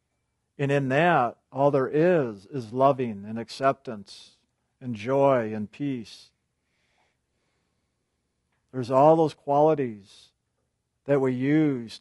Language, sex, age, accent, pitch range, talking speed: English, male, 50-69, American, 115-150 Hz, 105 wpm